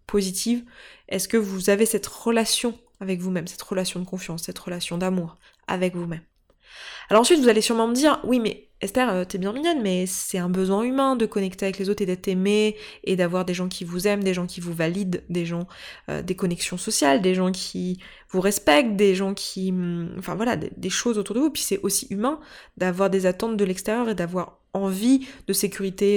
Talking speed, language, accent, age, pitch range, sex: 210 wpm, French, French, 20-39, 185-240 Hz, female